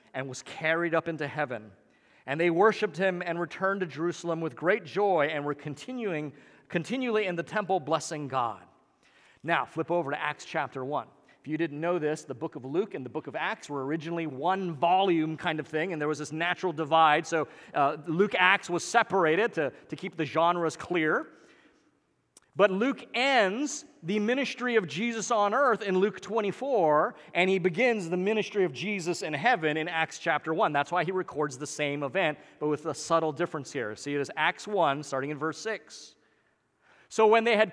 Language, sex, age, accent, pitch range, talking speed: English, male, 40-59, American, 150-195 Hz, 195 wpm